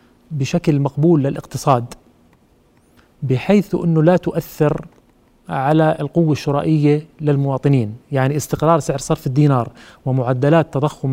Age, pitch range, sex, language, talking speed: 30-49, 135-160 Hz, male, Arabic, 95 wpm